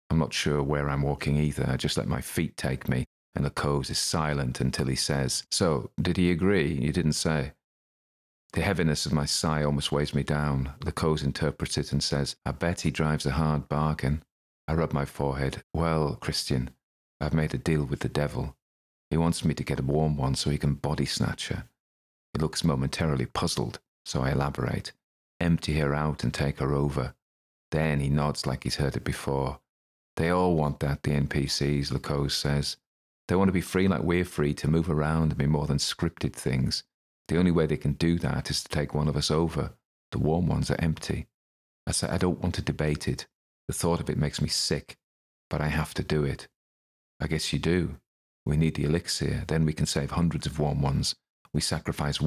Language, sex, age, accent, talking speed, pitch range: English, male, 40-59, British, 210 wpm, 70-80 Hz